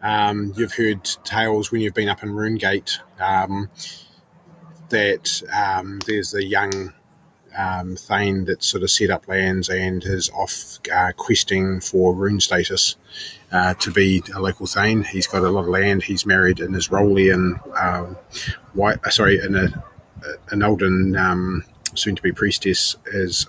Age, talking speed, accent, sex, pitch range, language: 30-49, 160 wpm, Australian, male, 90-105 Hz, English